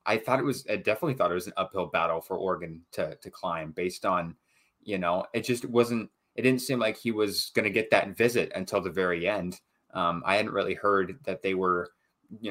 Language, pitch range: English, 90-105 Hz